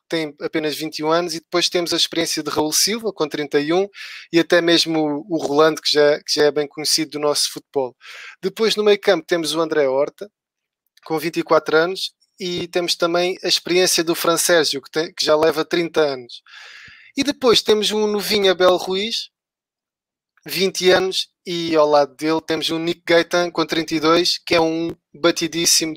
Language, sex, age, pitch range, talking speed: Portuguese, male, 20-39, 155-190 Hz, 180 wpm